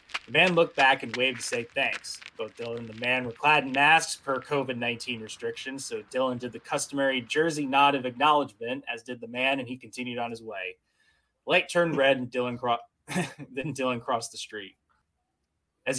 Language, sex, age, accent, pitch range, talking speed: English, male, 20-39, American, 120-155 Hz, 190 wpm